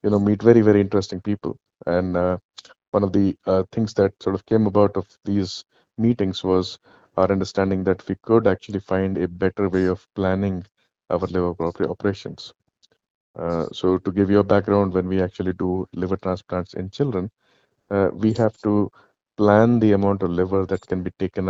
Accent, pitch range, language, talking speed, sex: Indian, 90-100 Hz, English, 185 wpm, male